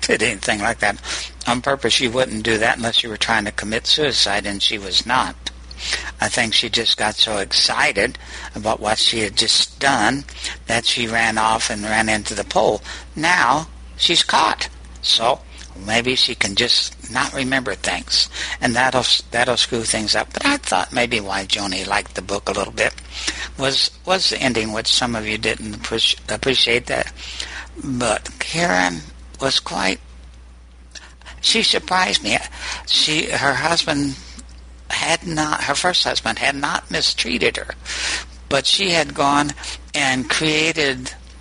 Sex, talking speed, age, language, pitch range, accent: male, 155 wpm, 60-79, English, 85-140 Hz, American